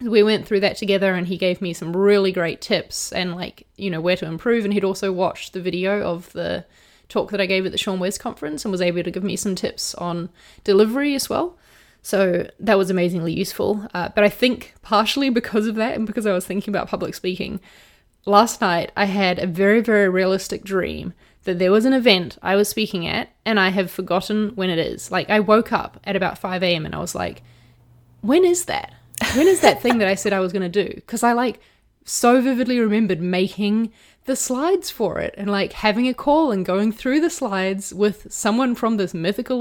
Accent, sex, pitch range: Australian, female, 185-230 Hz